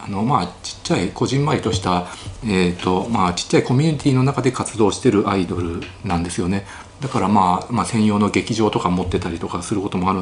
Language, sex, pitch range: Japanese, male, 90-135 Hz